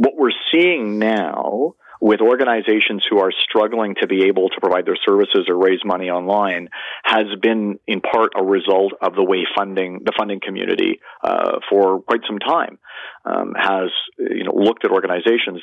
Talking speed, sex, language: 175 wpm, male, English